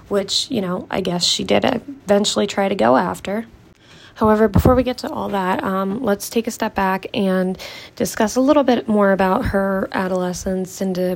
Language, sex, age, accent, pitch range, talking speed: English, female, 20-39, American, 190-225 Hz, 190 wpm